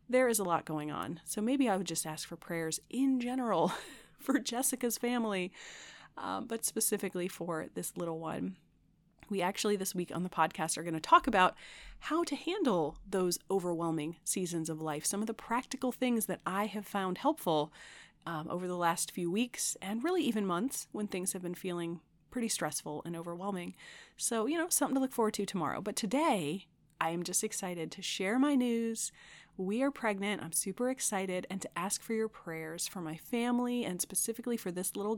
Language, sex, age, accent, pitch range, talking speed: English, female, 30-49, American, 170-235 Hz, 195 wpm